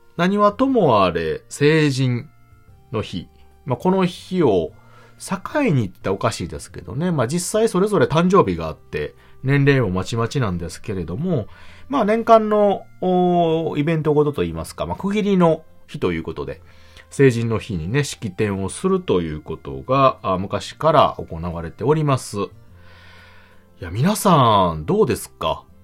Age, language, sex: 30-49, Japanese, male